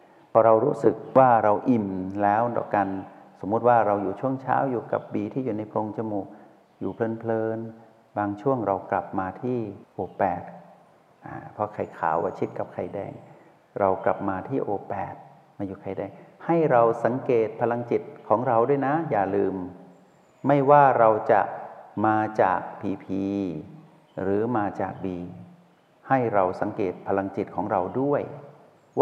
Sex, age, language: male, 60-79, Thai